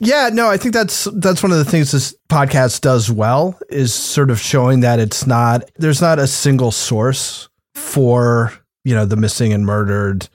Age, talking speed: 30-49, 190 wpm